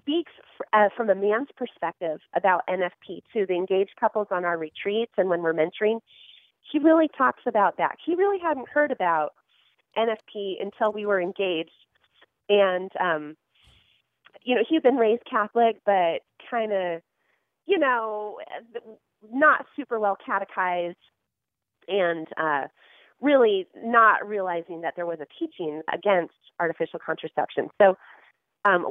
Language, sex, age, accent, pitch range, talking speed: English, female, 30-49, American, 175-235 Hz, 140 wpm